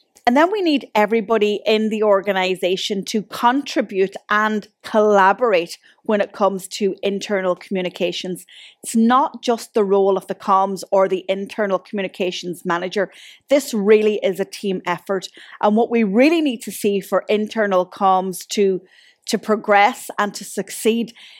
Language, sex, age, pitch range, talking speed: English, female, 30-49, 185-220 Hz, 150 wpm